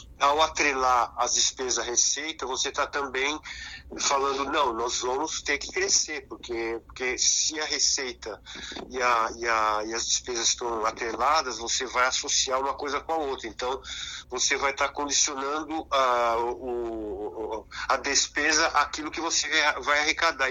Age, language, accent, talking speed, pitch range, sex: 50-69, Portuguese, Brazilian, 150 wpm, 120-155 Hz, male